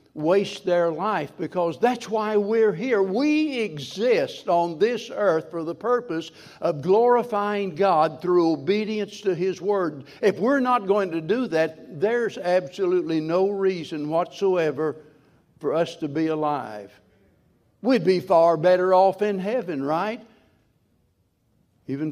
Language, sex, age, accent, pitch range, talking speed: English, male, 60-79, American, 155-195 Hz, 135 wpm